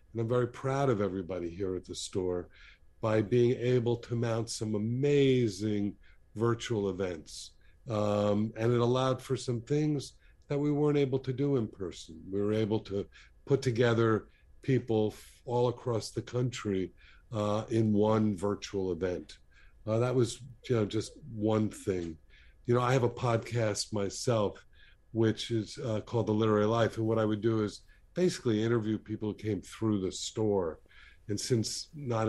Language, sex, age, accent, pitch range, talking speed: English, male, 50-69, American, 100-120 Hz, 165 wpm